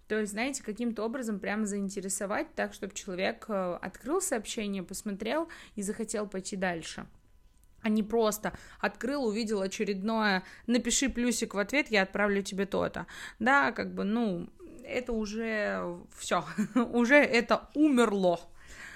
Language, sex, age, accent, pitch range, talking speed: Russian, female, 20-39, native, 190-235 Hz, 130 wpm